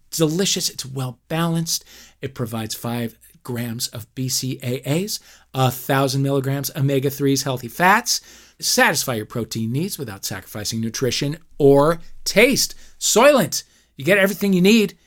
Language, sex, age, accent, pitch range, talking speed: English, male, 40-59, American, 120-165 Hz, 125 wpm